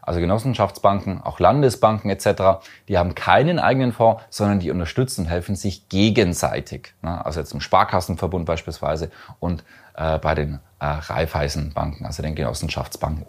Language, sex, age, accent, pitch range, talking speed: German, male, 30-49, German, 85-110 Hz, 130 wpm